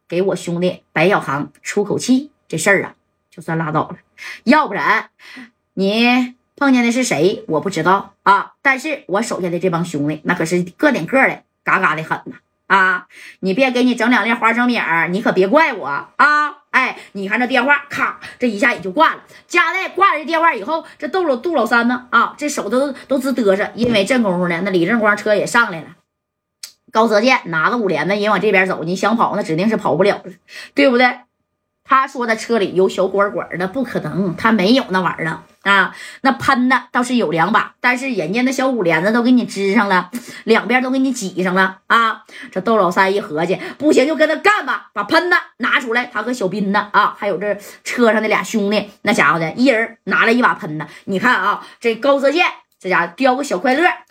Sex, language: female, Chinese